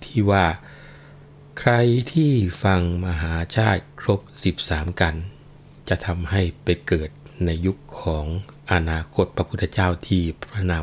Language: Thai